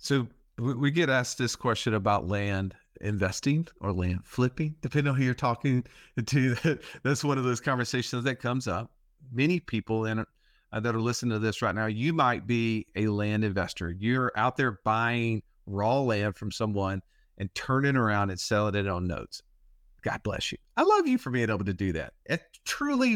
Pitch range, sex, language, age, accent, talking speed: 110-140 Hz, male, English, 40-59, American, 185 wpm